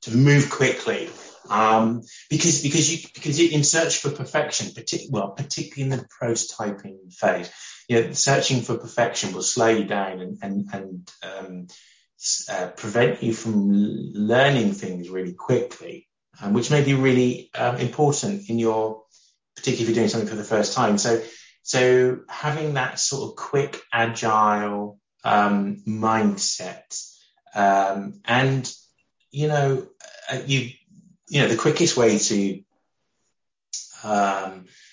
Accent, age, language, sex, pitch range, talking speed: British, 20-39, English, male, 105-140 Hz, 140 wpm